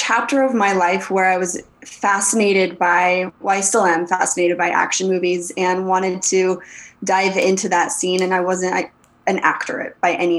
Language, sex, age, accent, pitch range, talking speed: English, female, 20-39, American, 175-190 Hz, 180 wpm